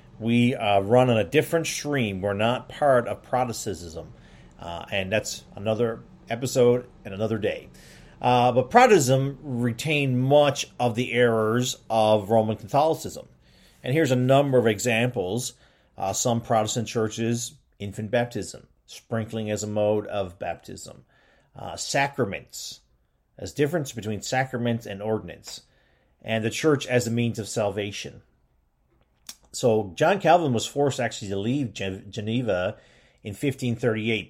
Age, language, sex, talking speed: 40-59, English, male, 135 wpm